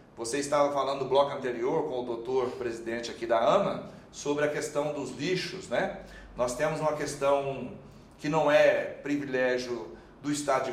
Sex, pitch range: male, 140-180 Hz